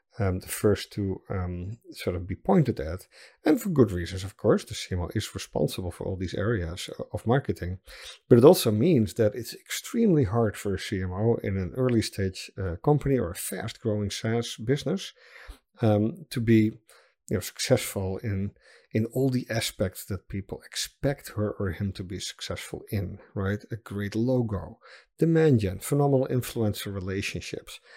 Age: 50-69